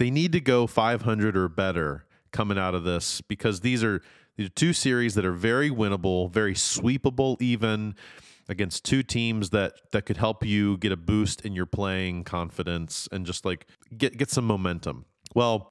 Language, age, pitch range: English, 30-49, 95-115 Hz